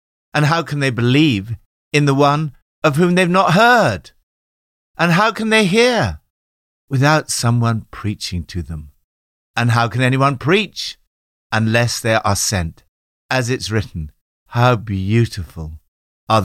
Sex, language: male, English